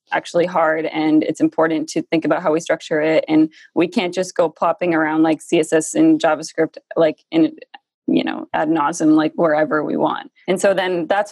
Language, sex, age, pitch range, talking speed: English, female, 20-39, 160-210 Hz, 195 wpm